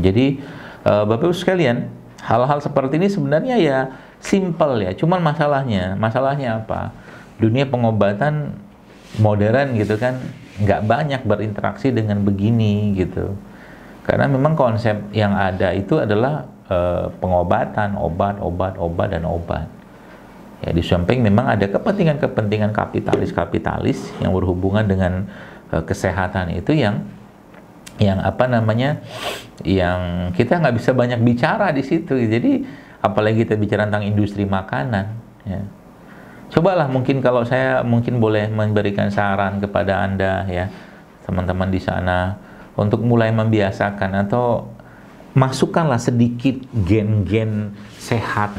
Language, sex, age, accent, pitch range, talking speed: Indonesian, male, 50-69, native, 95-125 Hz, 115 wpm